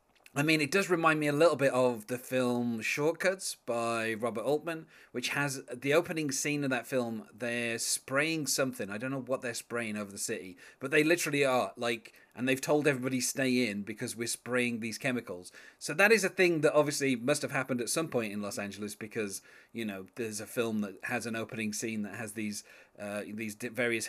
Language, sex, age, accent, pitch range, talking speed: English, male, 30-49, British, 115-150 Hz, 210 wpm